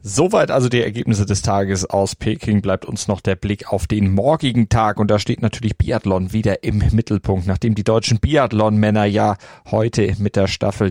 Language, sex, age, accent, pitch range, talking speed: German, male, 40-59, German, 100-120 Hz, 185 wpm